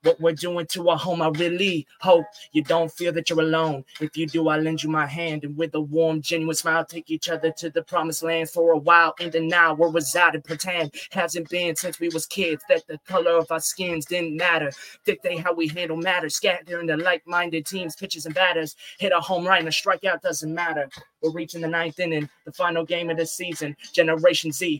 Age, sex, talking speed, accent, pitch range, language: 20-39, male, 225 wpm, American, 165-185 Hz, English